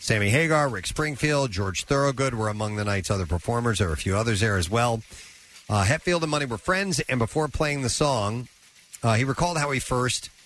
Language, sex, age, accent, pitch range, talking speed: English, male, 40-59, American, 105-140 Hz, 210 wpm